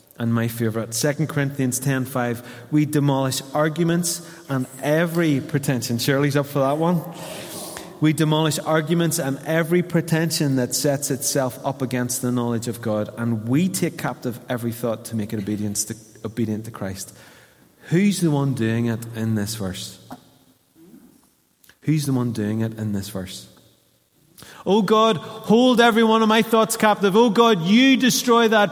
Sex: male